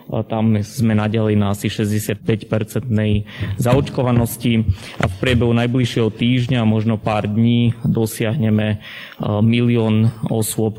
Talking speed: 100 wpm